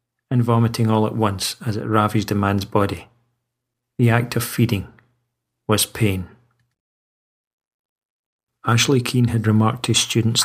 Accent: British